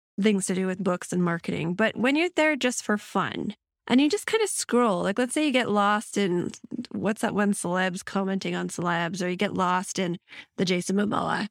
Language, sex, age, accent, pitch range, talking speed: English, female, 30-49, American, 195-250 Hz, 220 wpm